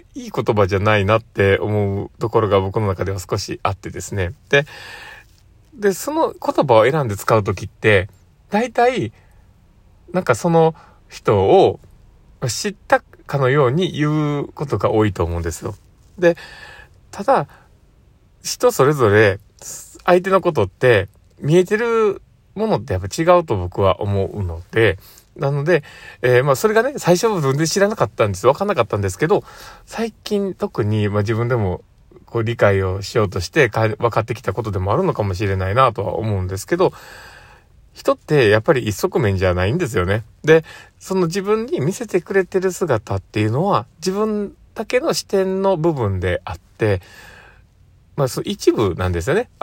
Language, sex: Japanese, male